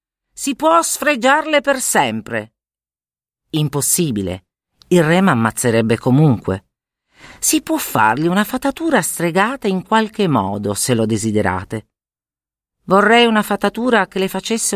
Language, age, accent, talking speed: Italian, 40-59, native, 115 wpm